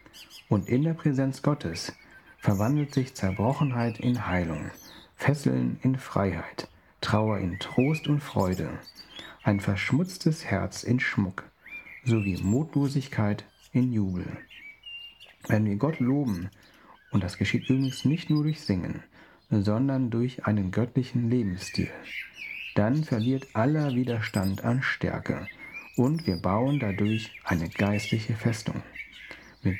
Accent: German